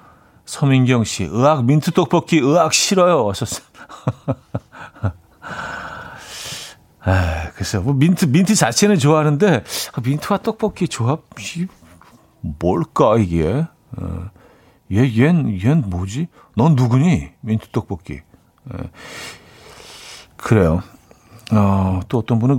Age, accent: 50-69, native